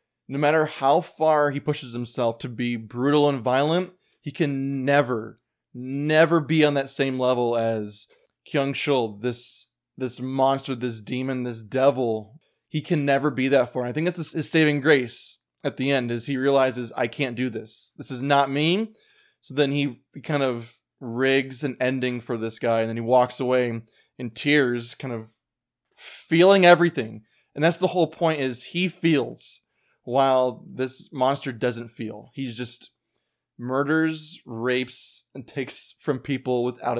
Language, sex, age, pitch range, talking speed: English, male, 20-39, 125-150 Hz, 165 wpm